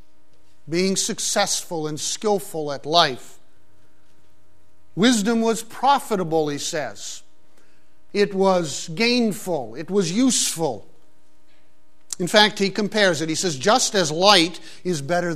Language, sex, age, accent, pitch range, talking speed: English, male, 50-69, American, 150-205 Hz, 115 wpm